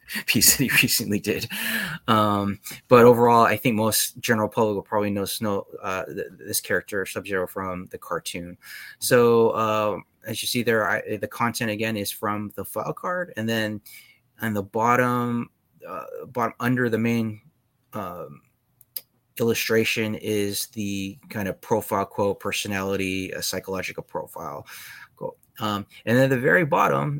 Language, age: English, 20-39